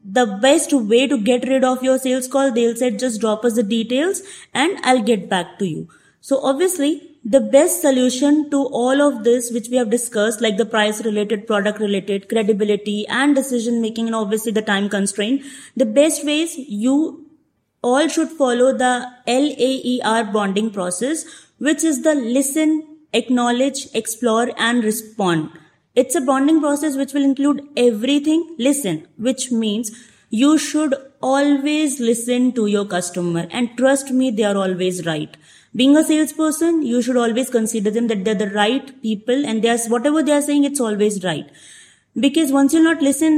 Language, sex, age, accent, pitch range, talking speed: Hindi, female, 20-39, native, 215-280 Hz, 170 wpm